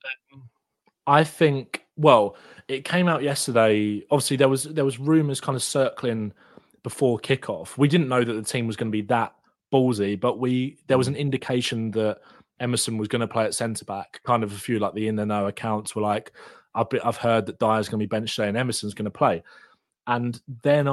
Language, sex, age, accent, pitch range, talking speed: English, male, 20-39, British, 105-130 Hz, 215 wpm